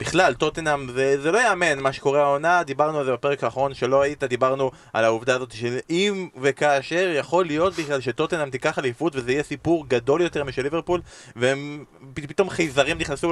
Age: 20-39